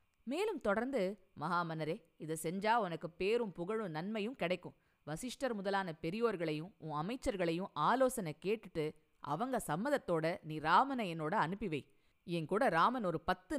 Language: Tamil